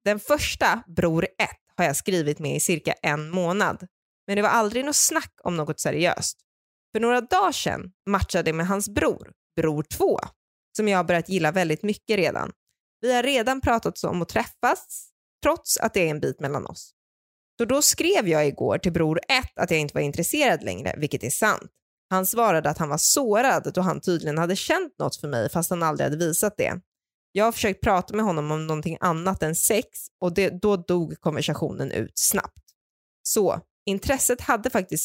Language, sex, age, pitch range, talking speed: Swedish, female, 20-39, 160-215 Hz, 195 wpm